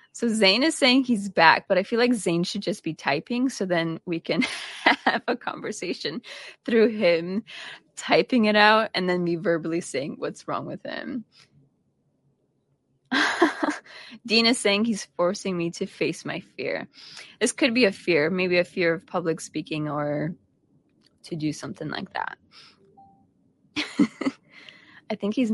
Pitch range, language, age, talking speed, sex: 170-215 Hz, English, 20-39, 155 wpm, female